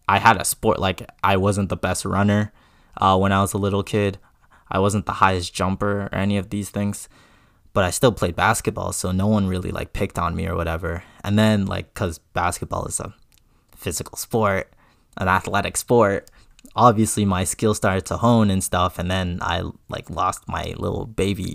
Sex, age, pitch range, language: male, 20-39, 95-115 Hz, English